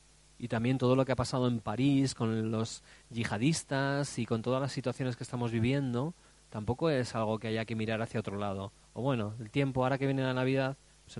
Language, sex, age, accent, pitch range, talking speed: Spanish, male, 30-49, Spanish, 115-140 Hz, 220 wpm